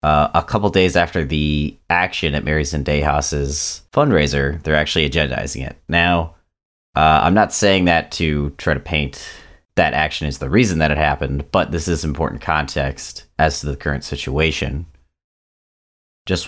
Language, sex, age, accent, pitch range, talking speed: English, male, 30-49, American, 70-85 Hz, 165 wpm